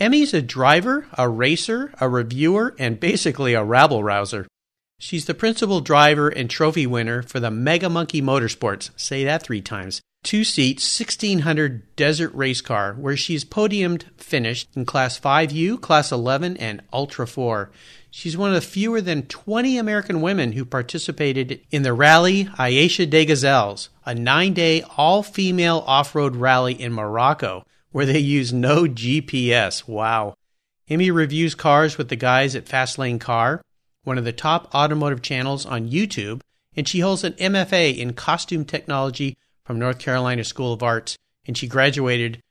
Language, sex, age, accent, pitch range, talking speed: English, male, 40-59, American, 125-165 Hz, 155 wpm